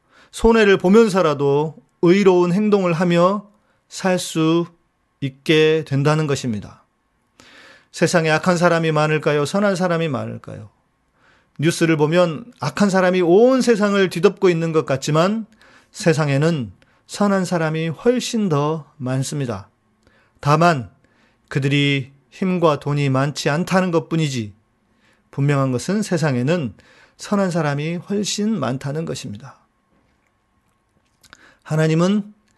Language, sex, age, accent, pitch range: Korean, male, 40-59, native, 140-185 Hz